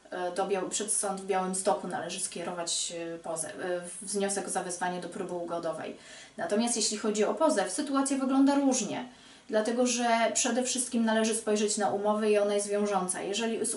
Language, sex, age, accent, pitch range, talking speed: Polish, female, 30-49, native, 190-220 Hz, 155 wpm